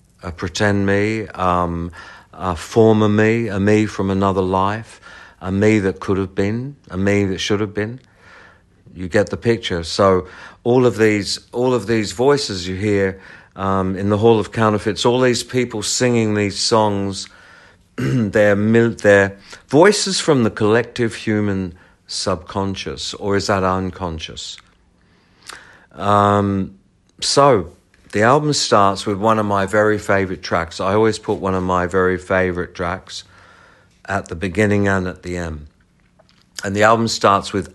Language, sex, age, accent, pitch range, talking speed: English, male, 50-69, British, 95-105 Hz, 150 wpm